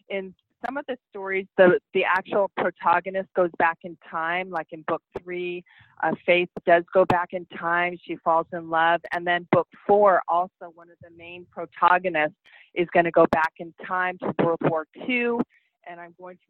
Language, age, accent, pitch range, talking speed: English, 30-49, American, 170-200 Hz, 195 wpm